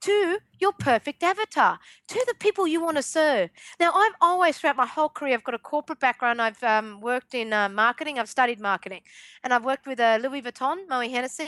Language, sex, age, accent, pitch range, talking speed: English, female, 40-59, Australian, 245-310 Hz, 215 wpm